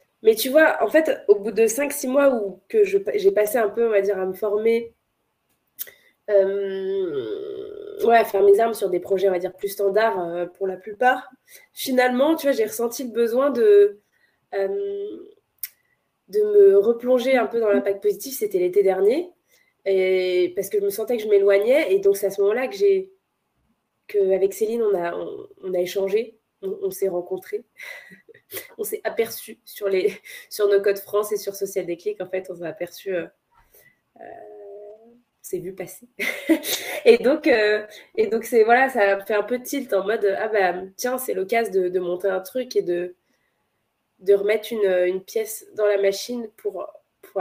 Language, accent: French, French